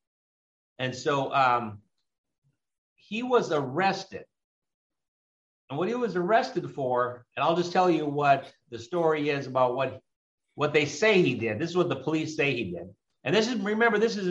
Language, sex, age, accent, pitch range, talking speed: English, male, 50-69, American, 125-170 Hz, 175 wpm